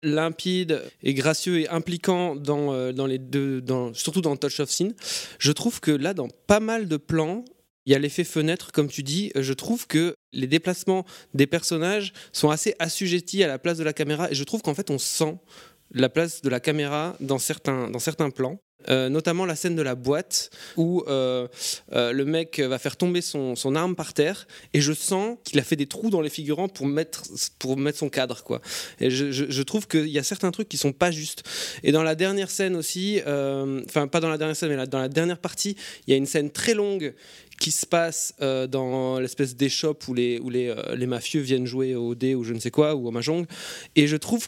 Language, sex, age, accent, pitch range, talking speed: French, male, 20-39, French, 135-175 Hz, 235 wpm